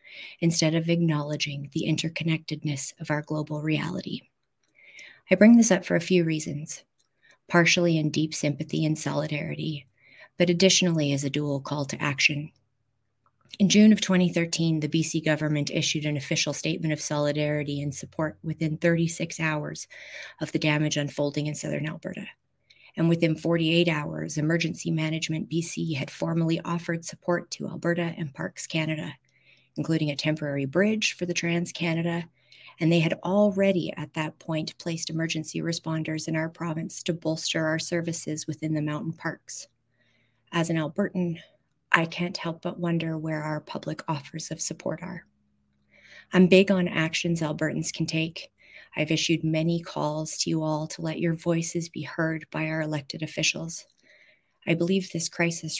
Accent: American